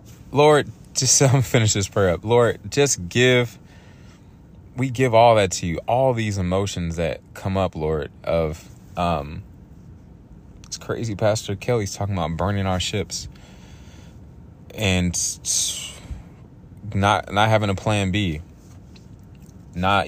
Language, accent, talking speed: English, American, 125 wpm